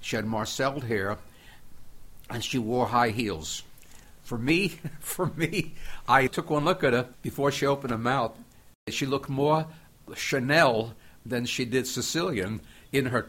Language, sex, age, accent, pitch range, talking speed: English, male, 60-79, American, 105-135 Hz, 155 wpm